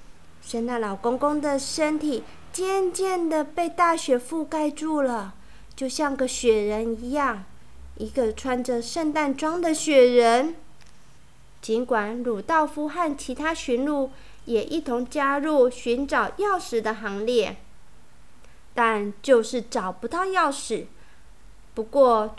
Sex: female